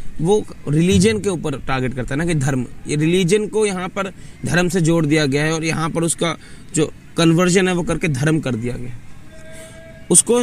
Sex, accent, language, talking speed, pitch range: male, native, Hindi, 200 wpm, 145-185 Hz